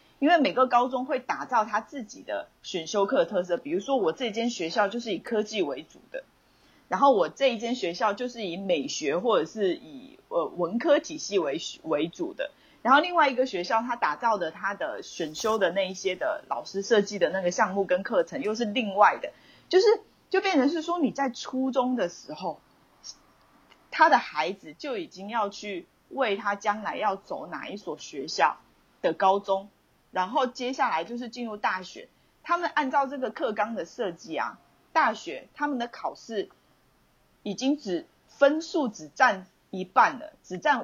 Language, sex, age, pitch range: Chinese, female, 30-49, 195-280 Hz